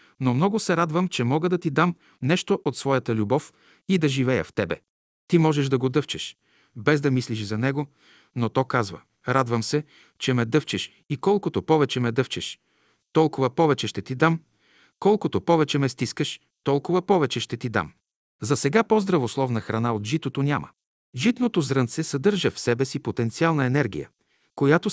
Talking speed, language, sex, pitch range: 170 wpm, Bulgarian, male, 120-165 Hz